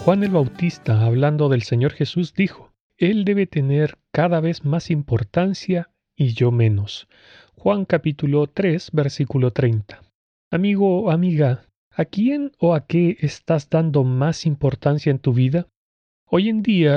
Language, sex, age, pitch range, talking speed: Spanish, male, 40-59, 130-170 Hz, 140 wpm